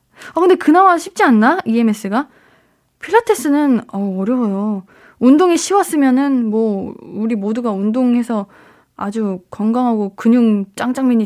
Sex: female